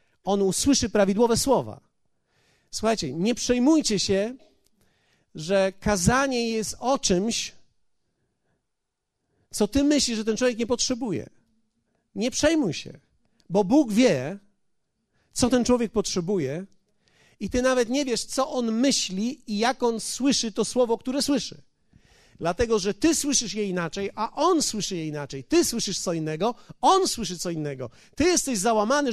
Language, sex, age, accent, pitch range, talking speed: Polish, male, 40-59, native, 195-265 Hz, 140 wpm